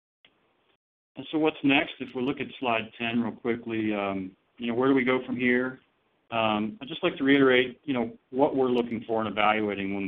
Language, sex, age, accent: English, male, 40-59, American